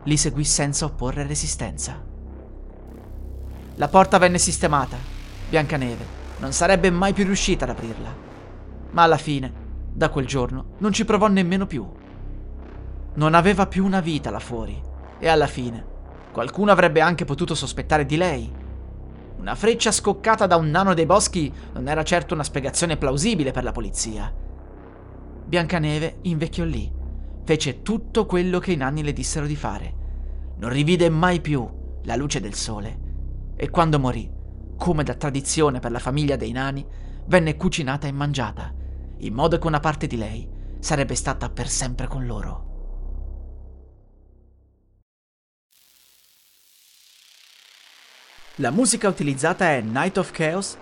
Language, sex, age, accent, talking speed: Italian, male, 30-49, native, 140 wpm